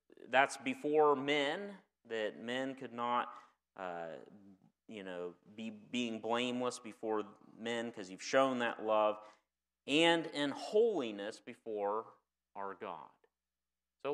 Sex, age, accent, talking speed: male, 40-59, American, 115 wpm